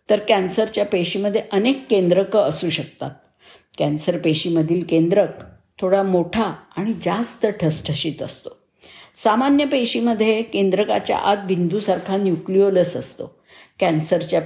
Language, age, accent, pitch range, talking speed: Marathi, 50-69, native, 175-225 Hz, 100 wpm